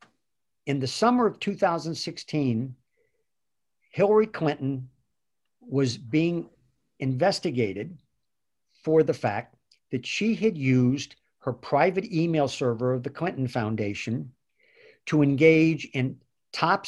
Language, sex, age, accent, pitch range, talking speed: English, male, 50-69, American, 135-180 Hz, 105 wpm